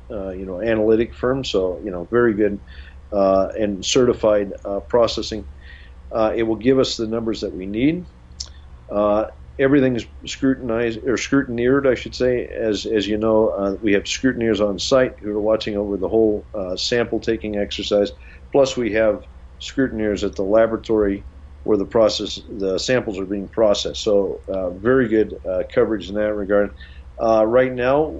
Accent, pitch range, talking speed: American, 95-115 Hz, 170 wpm